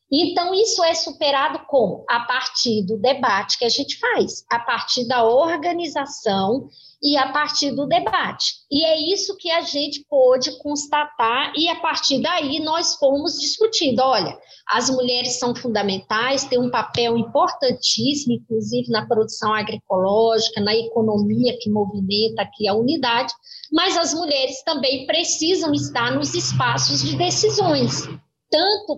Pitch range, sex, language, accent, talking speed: 235-325 Hz, female, Portuguese, Brazilian, 140 wpm